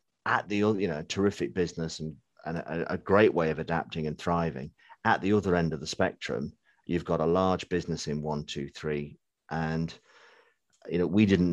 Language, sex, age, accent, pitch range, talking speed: English, male, 40-59, British, 80-90 Hz, 200 wpm